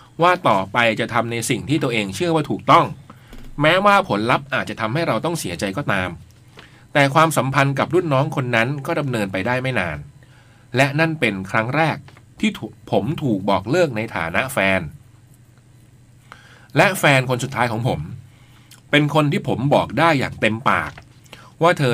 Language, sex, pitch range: Thai, male, 115-145 Hz